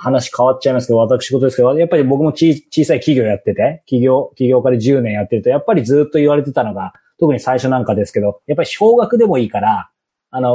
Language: Japanese